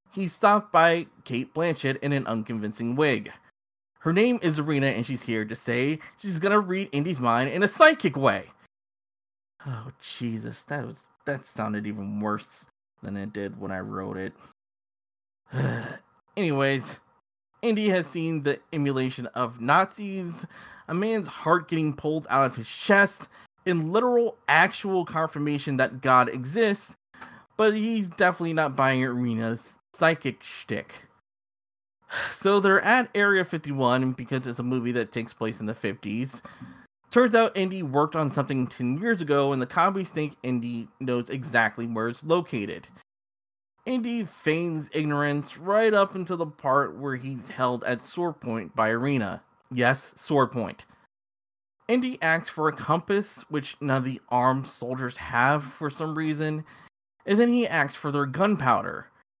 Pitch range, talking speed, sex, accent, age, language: 125-190 Hz, 150 wpm, male, American, 20-39, English